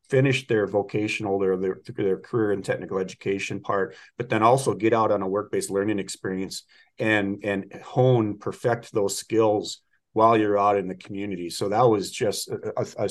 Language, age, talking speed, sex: English, 40-59, 180 wpm, male